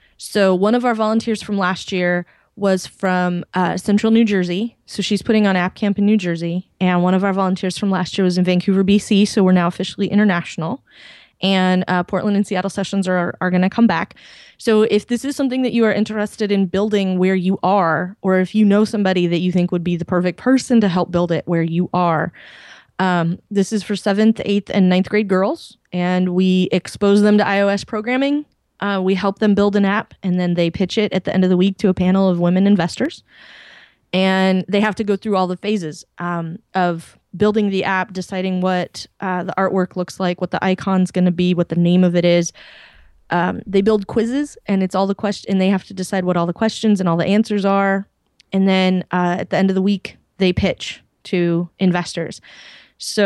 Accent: American